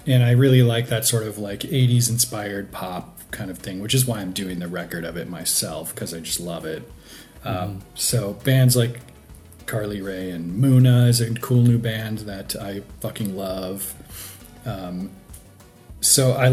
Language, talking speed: English, 175 wpm